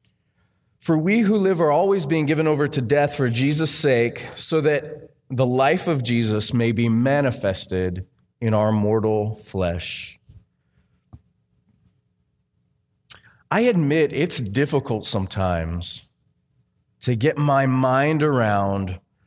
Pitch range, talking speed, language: 110-145 Hz, 115 wpm, English